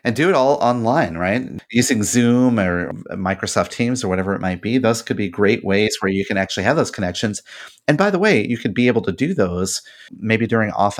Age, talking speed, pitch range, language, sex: 30-49, 230 wpm, 95-130 Hz, English, male